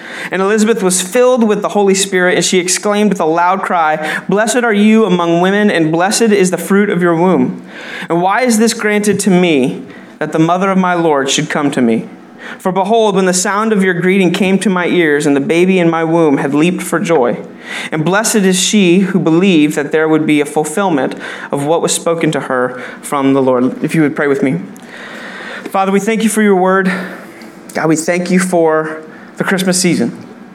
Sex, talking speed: male, 215 wpm